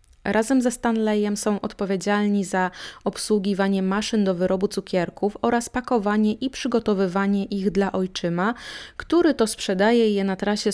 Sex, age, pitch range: female, 20-39, 190-225 Hz